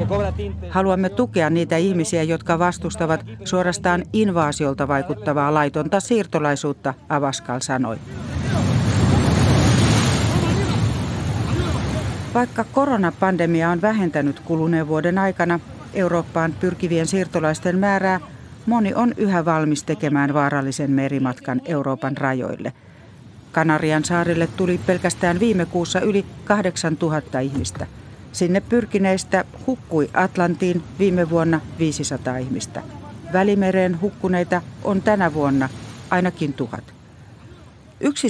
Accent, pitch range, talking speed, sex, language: native, 140-190 Hz, 90 wpm, female, Finnish